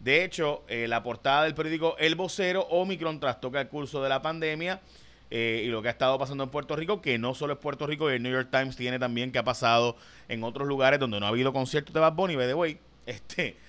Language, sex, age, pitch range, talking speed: Spanish, male, 30-49, 120-150 Hz, 240 wpm